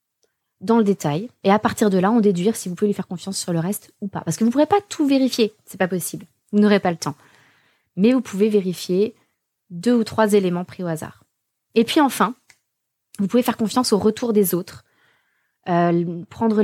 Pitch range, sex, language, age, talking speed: 190-245 Hz, female, French, 20-39, 220 wpm